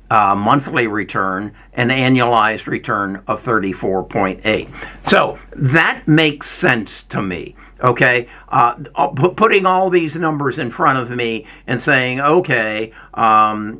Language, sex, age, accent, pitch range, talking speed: English, male, 60-79, American, 115-155 Hz, 120 wpm